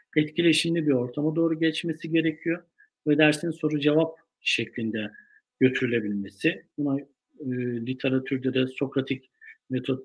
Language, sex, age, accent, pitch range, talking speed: Turkish, male, 50-69, native, 120-150 Hz, 100 wpm